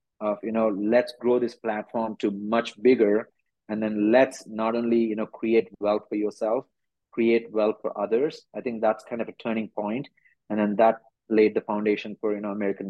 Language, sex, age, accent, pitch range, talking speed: English, male, 30-49, Indian, 105-120 Hz, 200 wpm